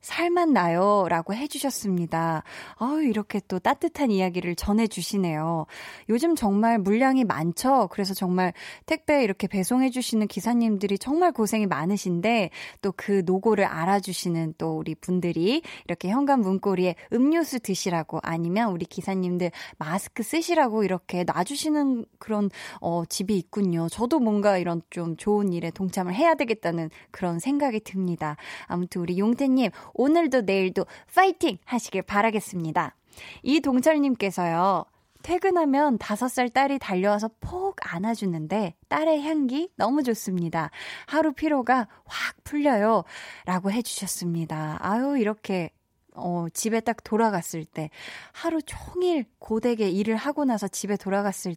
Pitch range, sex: 180-265 Hz, female